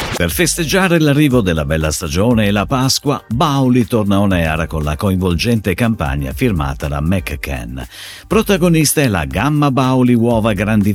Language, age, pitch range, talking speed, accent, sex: Italian, 50-69, 85-135 Hz, 150 wpm, native, male